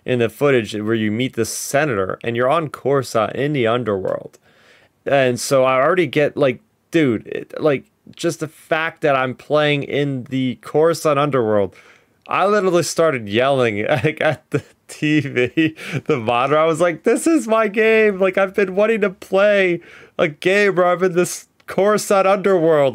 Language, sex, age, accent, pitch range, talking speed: English, male, 30-49, American, 125-165 Hz, 170 wpm